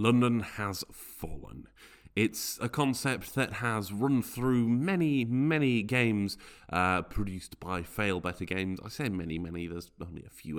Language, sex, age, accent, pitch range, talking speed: English, male, 30-49, British, 105-155 Hz, 155 wpm